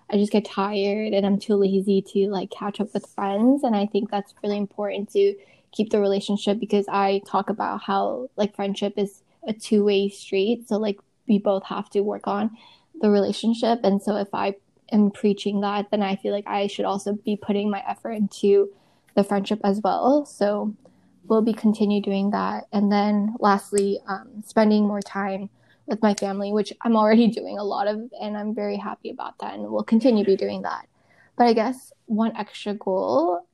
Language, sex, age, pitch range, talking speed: English, female, 10-29, 195-215 Hz, 200 wpm